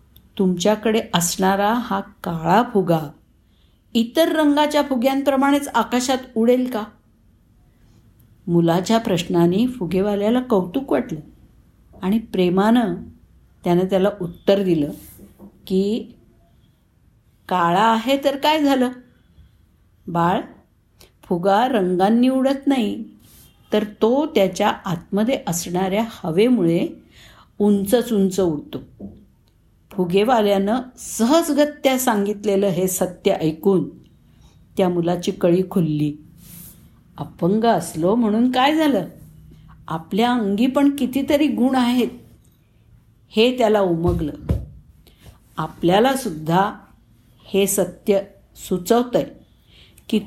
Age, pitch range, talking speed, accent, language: 50-69, 170-235 Hz, 85 wpm, native, Marathi